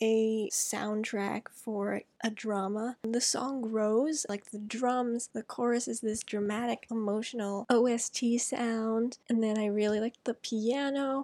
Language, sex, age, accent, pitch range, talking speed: English, female, 10-29, American, 215-245 Hz, 140 wpm